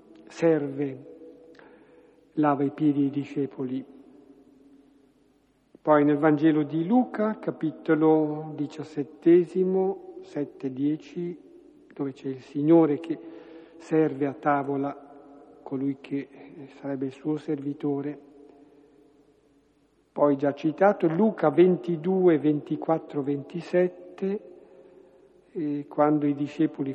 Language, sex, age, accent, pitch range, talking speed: Italian, male, 60-79, native, 140-165 Hz, 90 wpm